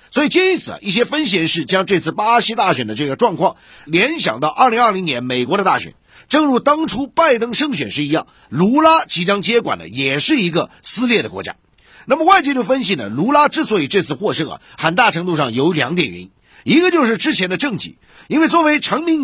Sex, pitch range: male, 170-280 Hz